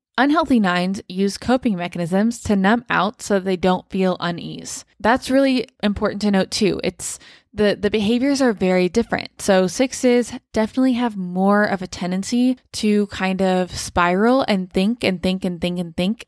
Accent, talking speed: American, 170 wpm